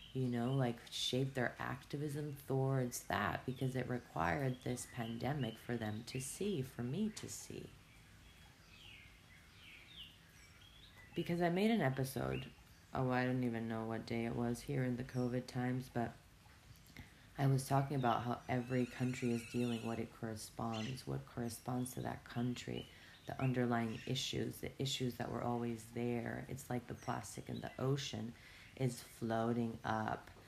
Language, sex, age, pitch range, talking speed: English, female, 30-49, 110-130 Hz, 150 wpm